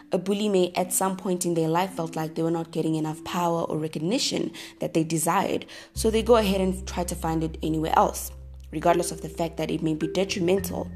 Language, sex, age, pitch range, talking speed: English, female, 20-39, 155-190 Hz, 230 wpm